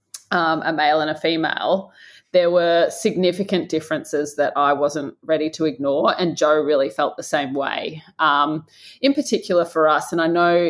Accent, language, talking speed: Australian, English, 175 wpm